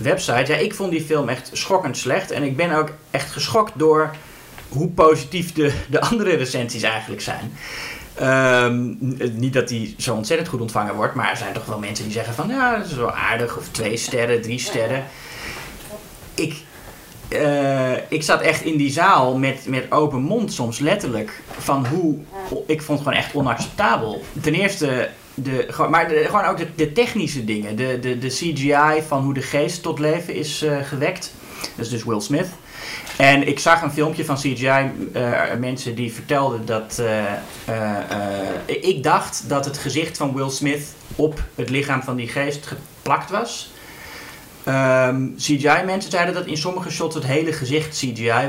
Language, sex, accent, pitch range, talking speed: Dutch, male, Dutch, 125-155 Hz, 180 wpm